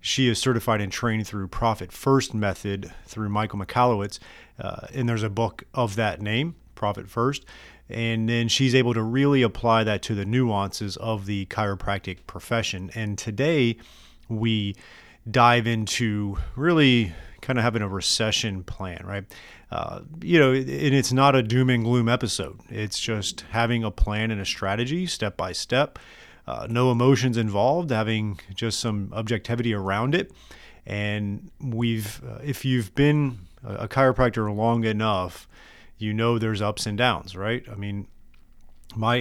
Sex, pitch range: male, 100-125 Hz